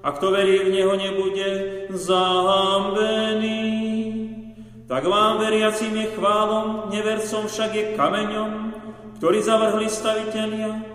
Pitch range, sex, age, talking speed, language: 190-215 Hz, male, 40-59, 105 wpm, Slovak